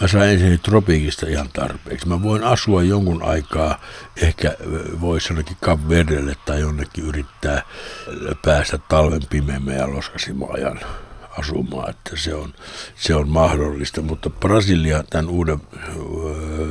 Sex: male